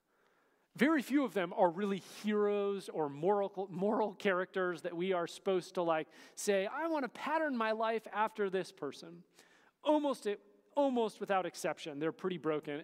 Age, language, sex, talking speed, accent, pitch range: 40-59, English, male, 165 wpm, American, 165-225 Hz